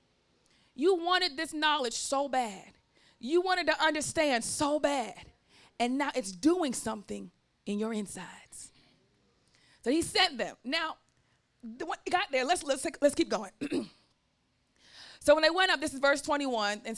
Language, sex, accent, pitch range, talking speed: English, female, American, 240-310 Hz, 160 wpm